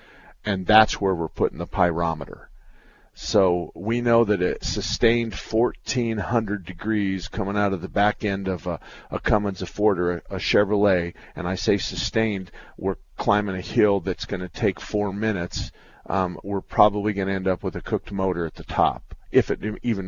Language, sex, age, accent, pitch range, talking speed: English, male, 50-69, American, 90-105 Hz, 185 wpm